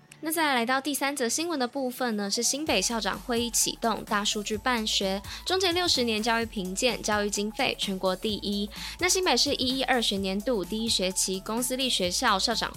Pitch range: 200-260 Hz